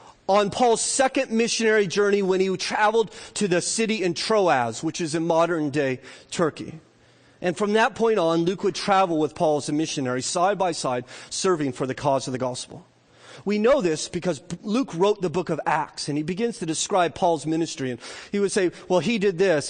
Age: 40-59